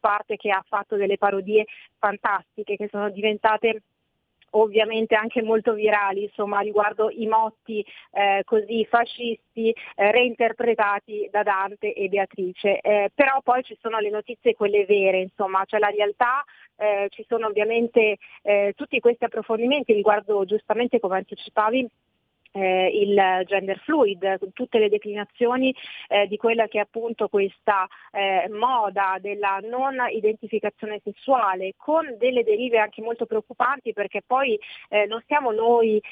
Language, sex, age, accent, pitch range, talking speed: Italian, female, 30-49, native, 205-235 Hz, 140 wpm